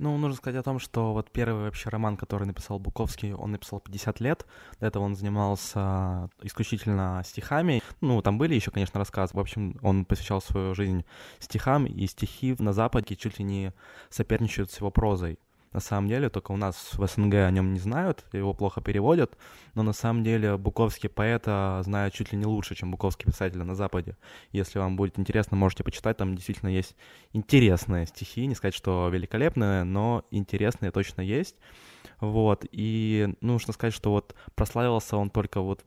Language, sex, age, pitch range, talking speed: Ukrainian, male, 20-39, 95-110 Hz, 180 wpm